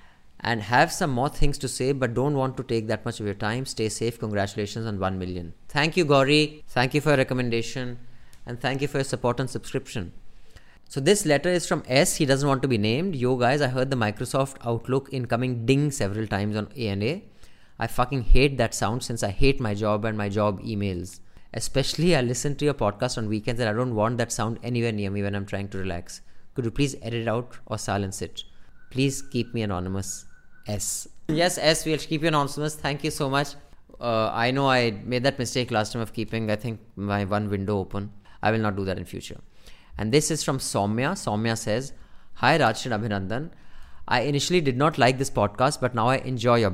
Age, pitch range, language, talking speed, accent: 20-39, 105-135 Hz, English, 220 wpm, Indian